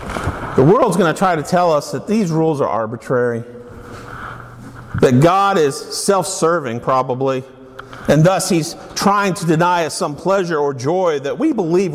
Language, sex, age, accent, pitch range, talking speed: English, male, 50-69, American, 120-180 Hz, 160 wpm